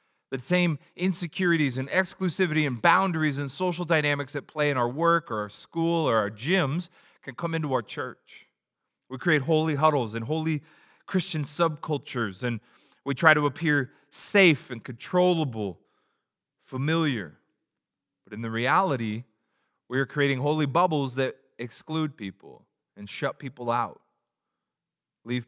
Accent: American